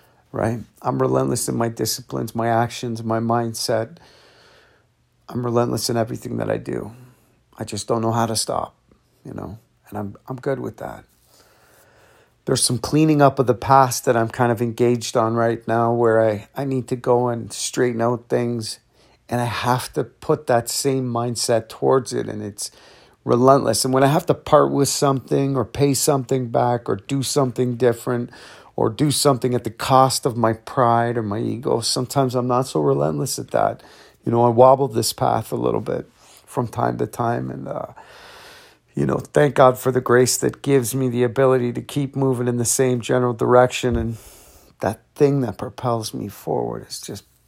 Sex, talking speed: male, 190 wpm